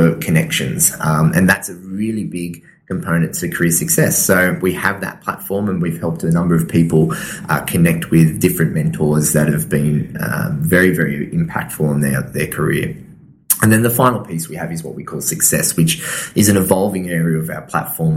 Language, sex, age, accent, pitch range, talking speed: English, male, 20-39, Australian, 80-105 Hz, 195 wpm